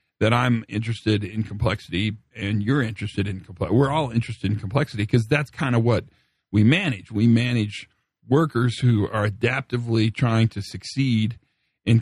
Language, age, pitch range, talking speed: English, 50-69, 105-130 Hz, 160 wpm